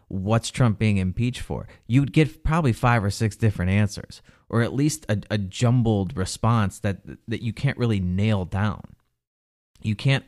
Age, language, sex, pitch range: 30-49, English, male, 95-115 Hz